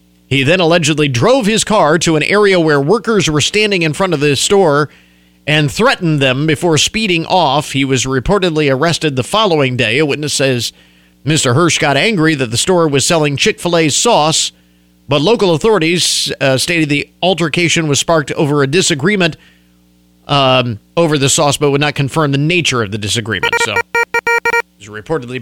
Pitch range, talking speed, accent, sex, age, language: 125-185 Hz, 170 wpm, American, male, 50-69, English